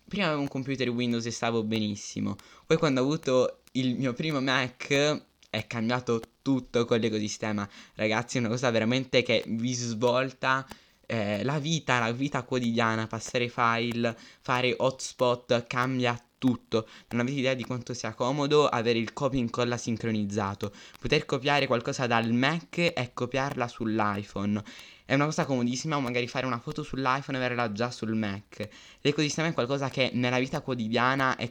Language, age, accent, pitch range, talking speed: Italian, 10-29, native, 115-135 Hz, 160 wpm